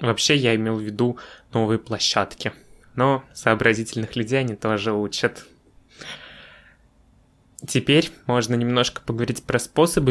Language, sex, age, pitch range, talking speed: Russian, male, 20-39, 115-135 Hz, 115 wpm